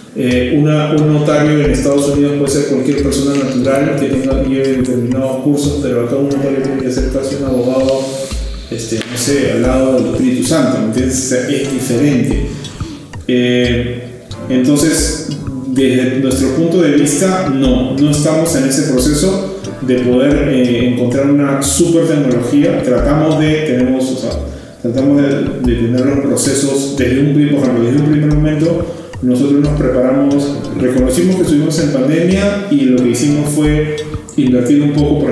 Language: Spanish